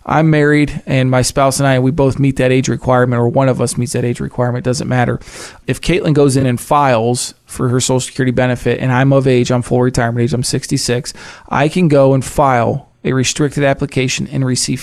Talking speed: 220 wpm